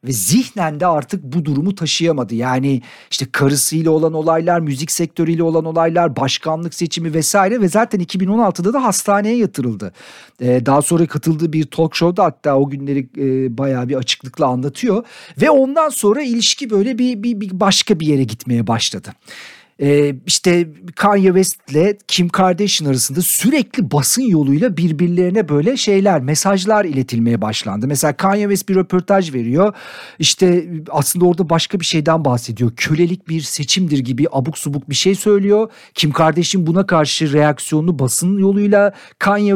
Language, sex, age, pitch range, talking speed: Turkish, male, 50-69, 140-200 Hz, 150 wpm